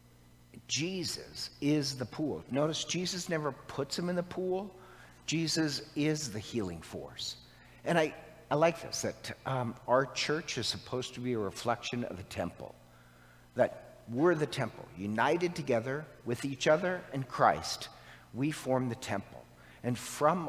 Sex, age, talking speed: male, 50-69, 150 wpm